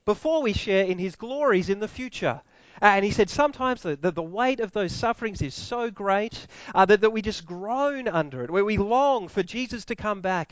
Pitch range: 180-240 Hz